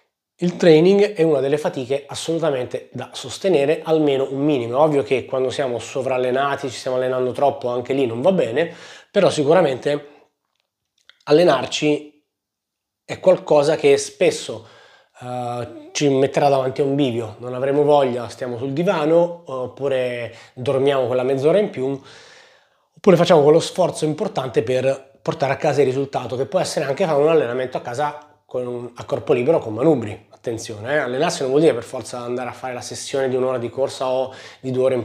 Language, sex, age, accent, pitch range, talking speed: Italian, male, 30-49, native, 125-155 Hz, 170 wpm